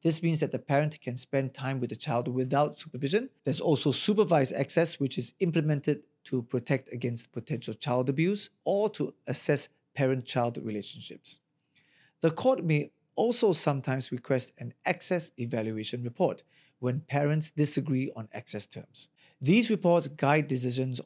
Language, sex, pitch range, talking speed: English, male, 130-160 Hz, 145 wpm